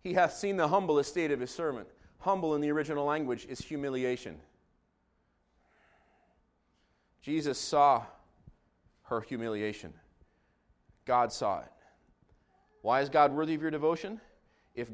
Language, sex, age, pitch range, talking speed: English, male, 30-49, 130-195 Hz, 125 wpm